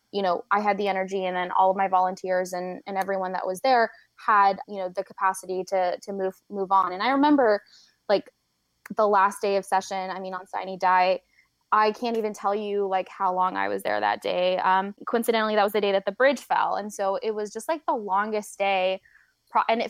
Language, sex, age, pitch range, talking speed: English, female, 10-29, 190-215 Hz, 230 wpm